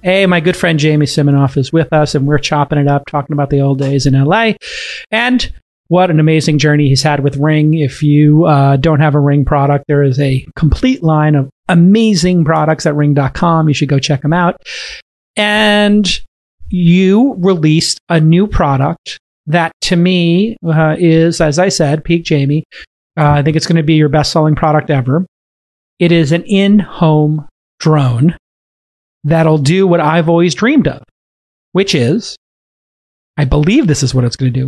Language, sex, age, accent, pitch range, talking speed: English, male, 40-59, American, 145-185 Hz, 180 wpm